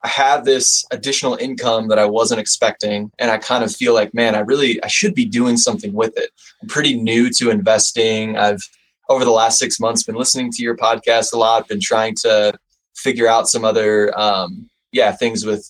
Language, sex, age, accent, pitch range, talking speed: English, male, 20-39, American, 105-130 Hz, 210 wpm